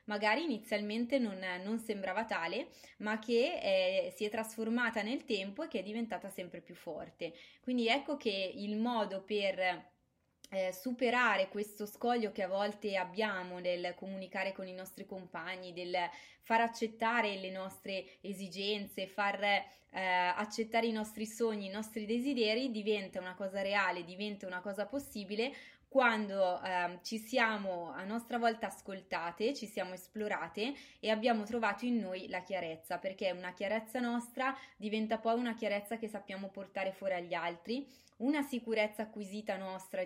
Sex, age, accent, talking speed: female, 20-39, native, 150 wpm